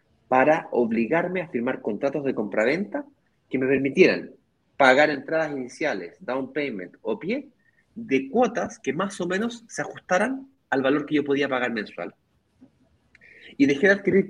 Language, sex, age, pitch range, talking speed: Spanish, male, 30-49, 125-190 Hz, 150 wpm